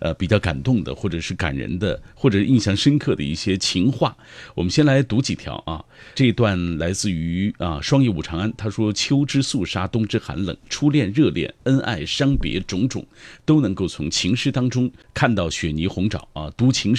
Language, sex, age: Chinese, male, 50-69